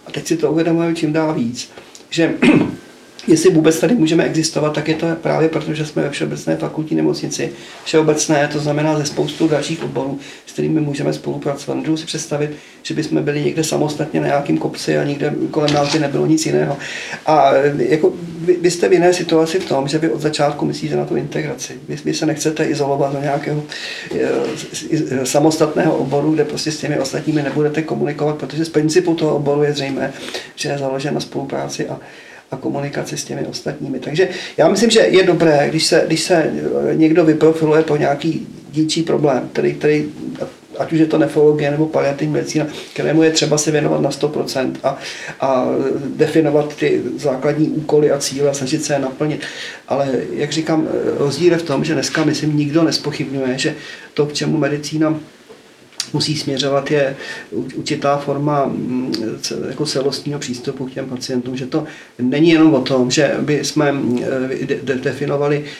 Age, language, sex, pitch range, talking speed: 40-59, Czech, male, 140-155 Hz, 170 wpm